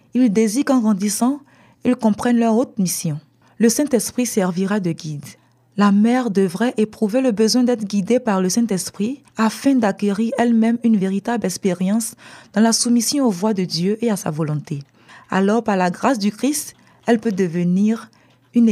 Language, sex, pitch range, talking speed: French, female, 190-235 Hz, 165 wpm